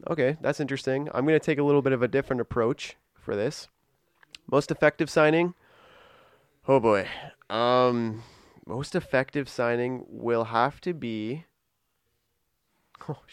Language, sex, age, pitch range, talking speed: English, male, 20-39, 115-145 Hz, 130 wpm